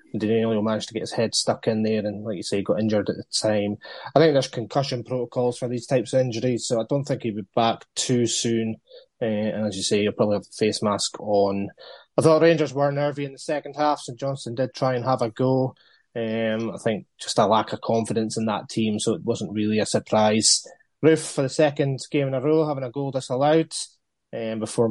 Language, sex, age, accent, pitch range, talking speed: English, male, 20-39, British, 110-140 Hz, 235 wpm